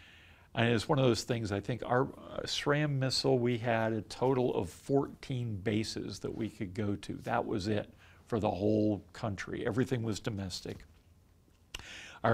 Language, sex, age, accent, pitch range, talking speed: English, male, 50-69, American, 100-125 Hz, 165 wpm